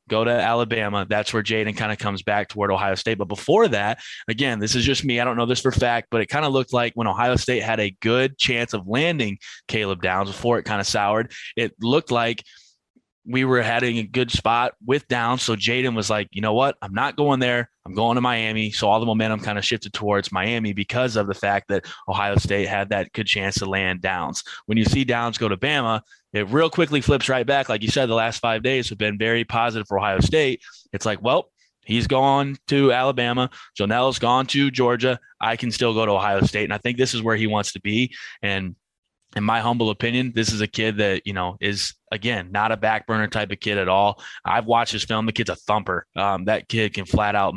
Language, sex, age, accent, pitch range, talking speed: English, male, 20-39, American, 100-120 Hz, 240 wpm